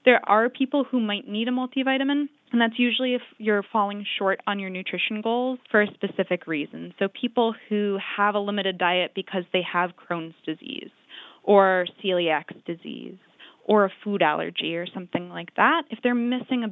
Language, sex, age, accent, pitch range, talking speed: English, female, 10-29, American, 185-245 Hz, 180 wpm